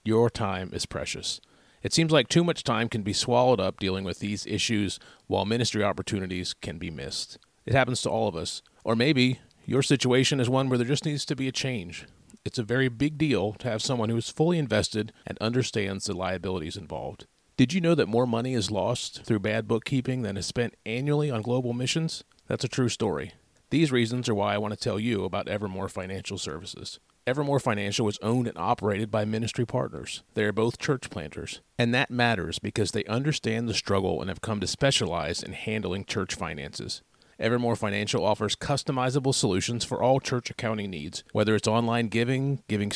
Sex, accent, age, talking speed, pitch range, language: male, American, 30-49, 200 wpm, 105-130 Hz, English